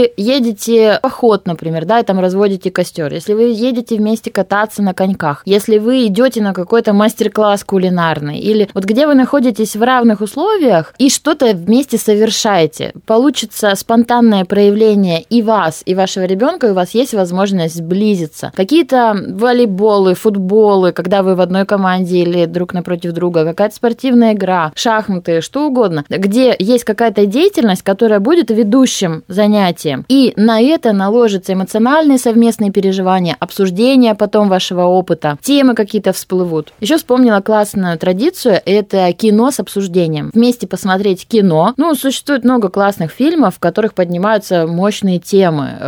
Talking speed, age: 145 wpm, 20-39